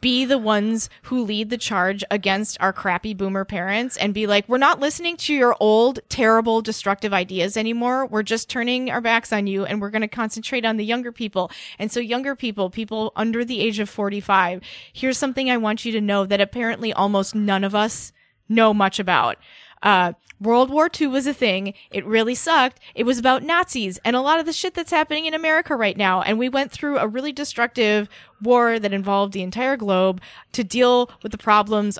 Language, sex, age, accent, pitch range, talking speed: English, female, 20-39, American, 200-250 Hz, 210 wpm